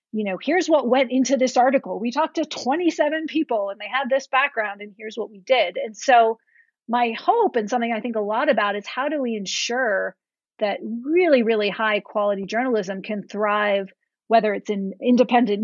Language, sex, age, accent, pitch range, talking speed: English, female, 30-49, American, 205-245 Hz, 195 wpm